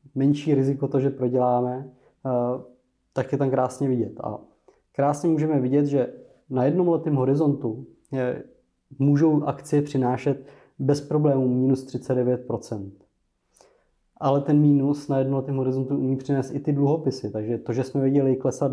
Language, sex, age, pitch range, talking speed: Czech, male, 20-39, 120-140 Hz, 140 wpm